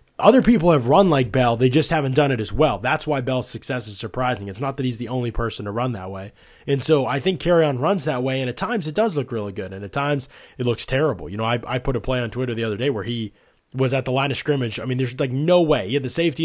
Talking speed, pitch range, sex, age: 300 wpm, 115-150 Hz, male, 20-39